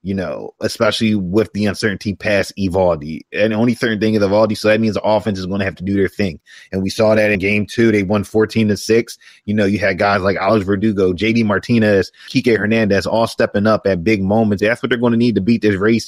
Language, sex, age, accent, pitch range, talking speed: English, male, 20-39, American, 100-115 Hz, 255 wpm